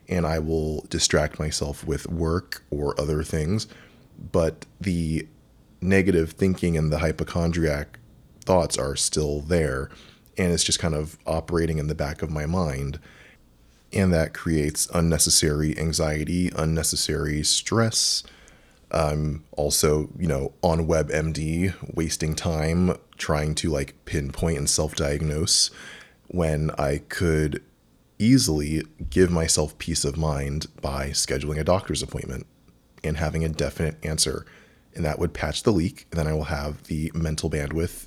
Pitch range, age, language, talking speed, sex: 75-85 Hz, 20-39, English, 135 wpm, male